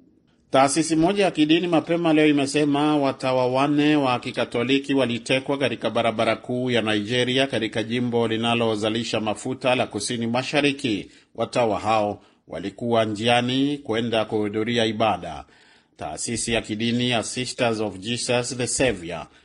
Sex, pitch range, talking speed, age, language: male, 105-125 Hz, 115 wpm, 40-59, Swahili